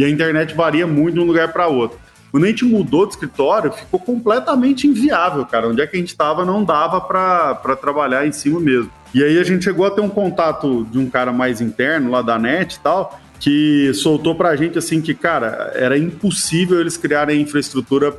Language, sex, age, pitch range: Portuguese, male, 20-39, 135-175 Hz